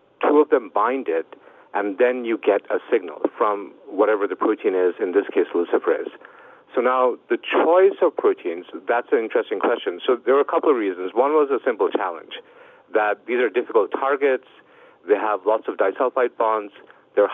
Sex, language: male, English